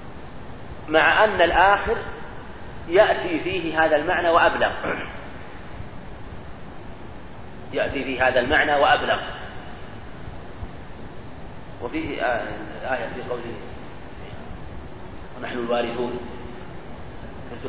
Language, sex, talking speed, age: Arabic, male, 75 wpm, 40-59